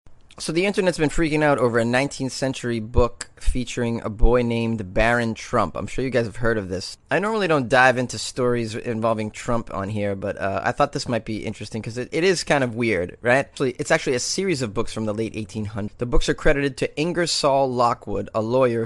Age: 30-49